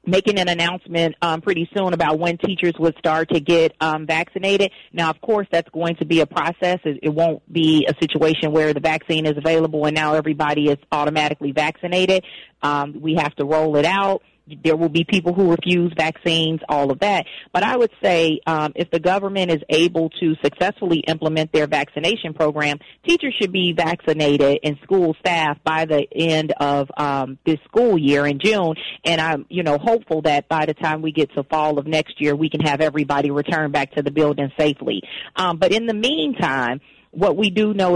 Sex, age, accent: female, 40-59, American